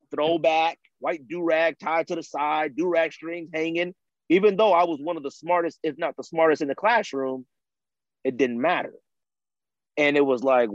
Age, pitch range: 30-49, 135-195 Hz